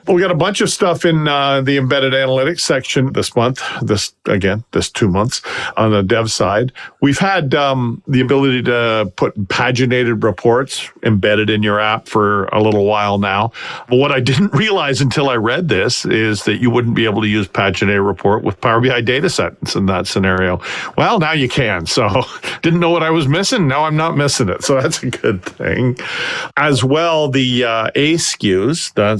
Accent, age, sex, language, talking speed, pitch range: American, 50-69, male, English, 195 wpm, 100-130 Hz